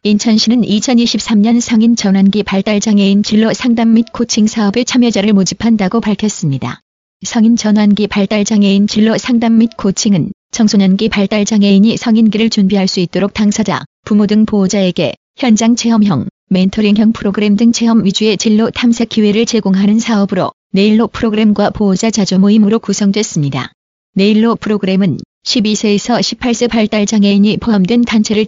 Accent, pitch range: native, 200-225 Hz